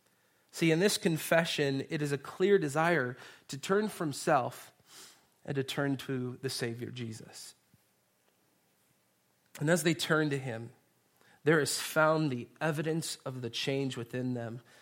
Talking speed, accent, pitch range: 145 wpm, American, 125-165 Hz